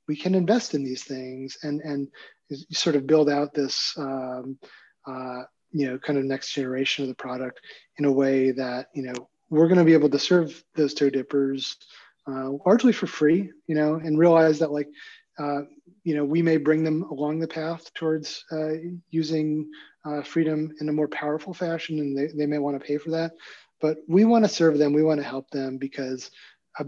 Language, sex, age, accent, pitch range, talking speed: English, male, 30-49, American, 135-160 Hz, 205 wpm